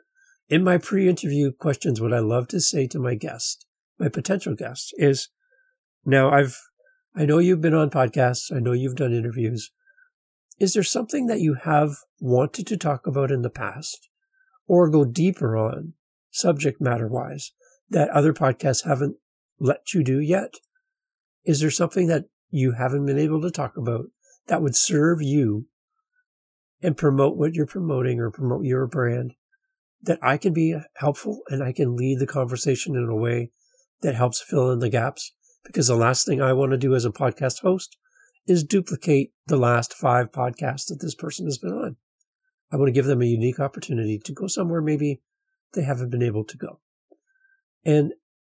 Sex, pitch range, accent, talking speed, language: male, 130-195 Hz, American, 180 wpm, English